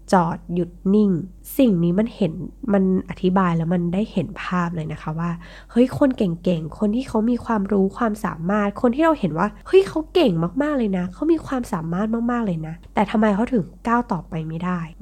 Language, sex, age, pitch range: Thai, female, 20-39, 175-225 Hz